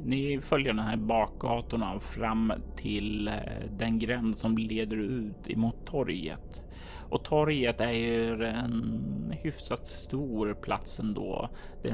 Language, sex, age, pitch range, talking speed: Swedish, male, 30-49, 105-120 Hz, 120 wpm